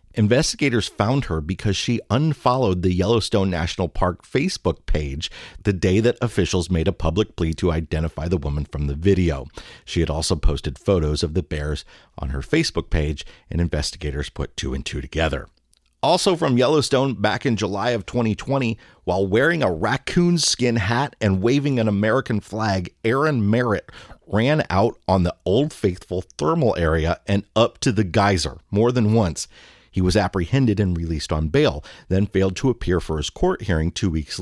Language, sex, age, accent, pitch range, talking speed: English, male, 40-59, American, 80-110 Hz, 175 wpm